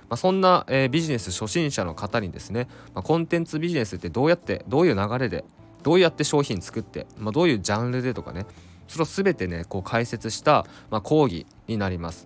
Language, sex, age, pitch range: Japanese, male, 20-39, 100-150 Hz